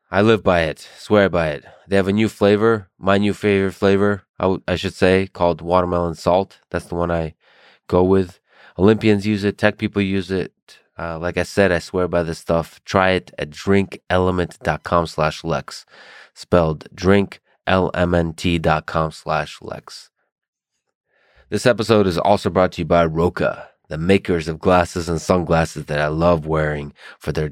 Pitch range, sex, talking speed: 80-95 Hz, male, 170 wpm